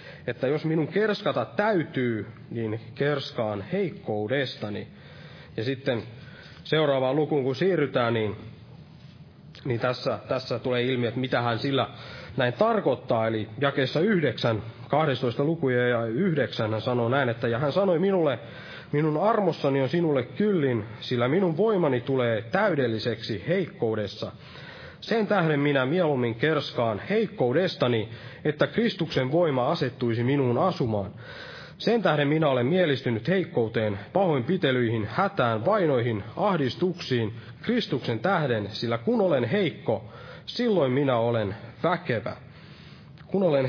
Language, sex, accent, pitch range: Finnish, male, native, 120-160 Hz